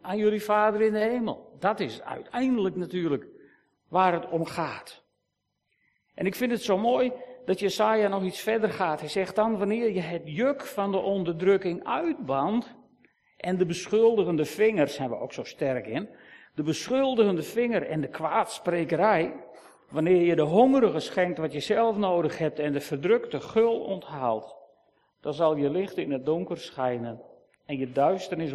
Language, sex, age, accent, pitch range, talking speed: Dutch, male, 50-69, Dutch, 155-210 Hz, 165 wpm